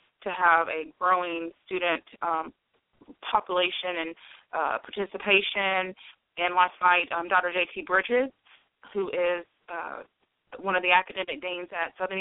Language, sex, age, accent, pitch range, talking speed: English, female, 30-49, American, 165-190 Hz, 135 wpm